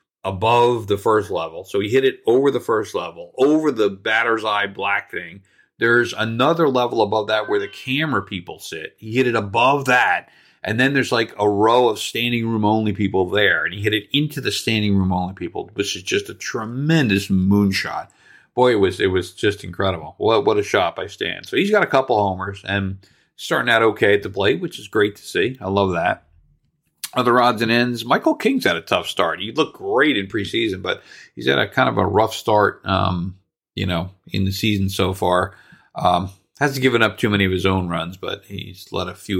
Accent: American